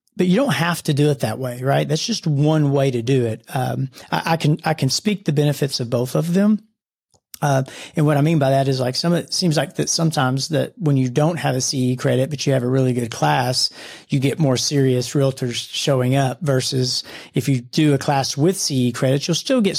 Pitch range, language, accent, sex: 125-145 Hz, English, American, male